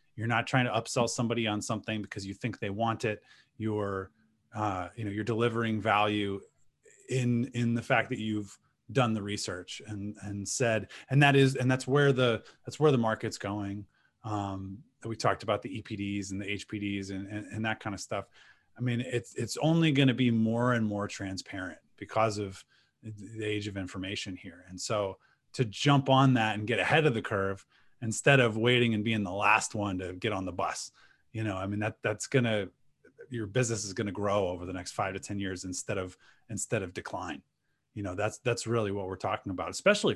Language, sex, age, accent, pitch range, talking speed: English, male, 20-39, American, 100-120 Hz, 205 wpm